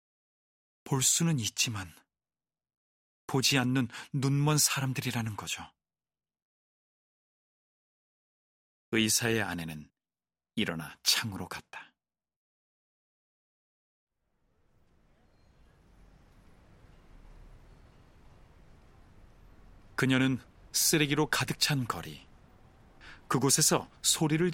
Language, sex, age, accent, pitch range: Korean, male, 40-59, native, 90-135 Hz